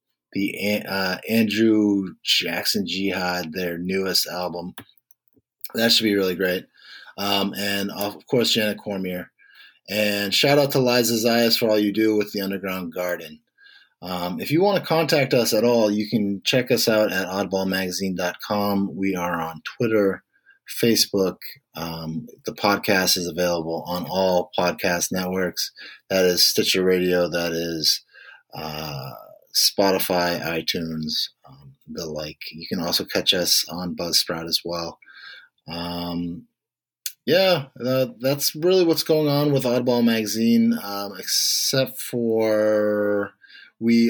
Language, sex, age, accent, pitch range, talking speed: English, male, 30-49, American, 90-115 Hz, 135 wpm